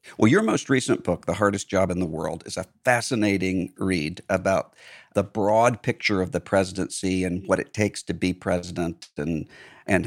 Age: 50-69